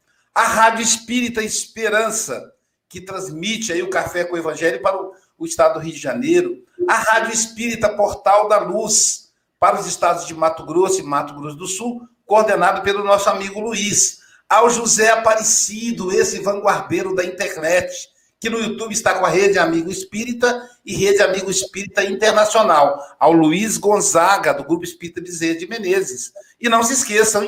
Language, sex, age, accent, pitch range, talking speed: Portuguese, male, 60-79, Brazilian, 180-225 Hz, 165 wpm